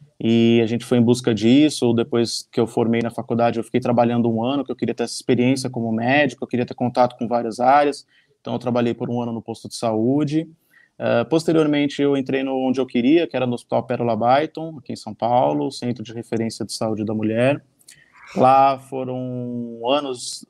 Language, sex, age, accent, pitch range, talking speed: Portuguese, male, 20-39, Brazilian, 120-145 Hz, 210 wpm